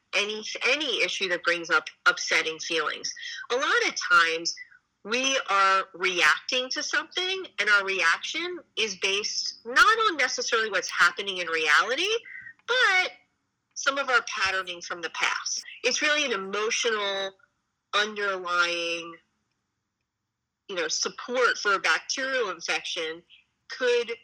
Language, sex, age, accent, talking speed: English, female, 40-59, American, 125 wpm